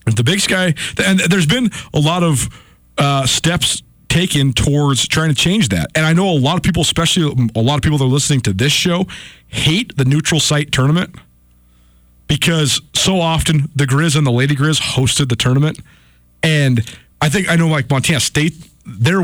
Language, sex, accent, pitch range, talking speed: English, male, American, 125-160 Hz, 190 wpm